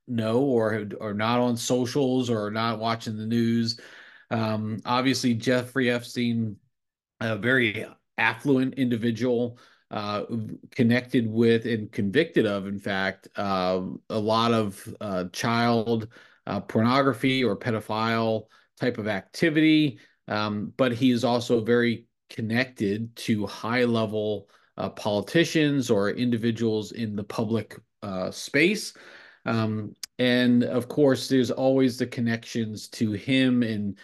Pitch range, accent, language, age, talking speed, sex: 110-125 Hz, American, English, 40-59, 125 wpm, male